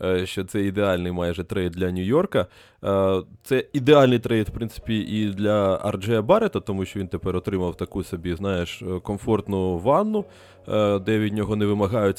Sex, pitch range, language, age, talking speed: male, 95-120 Hz, Ukrainian, 20-39, 155 wpm